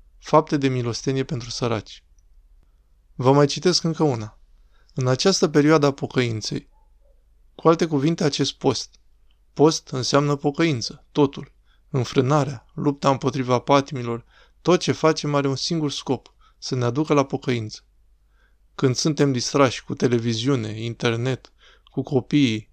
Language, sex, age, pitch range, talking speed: Romanian, male, 20-39, 120-145 Hz, 125 wpm